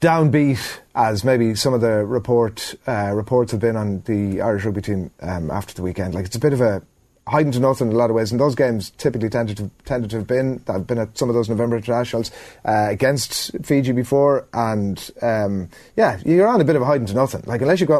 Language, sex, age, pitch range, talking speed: English, male, 30-49, 110-140 Hz, 245 wpm